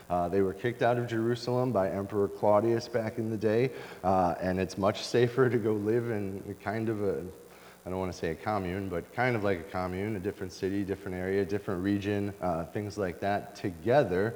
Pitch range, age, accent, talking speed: 90-115 Hz, 30-49, American, 215 wpm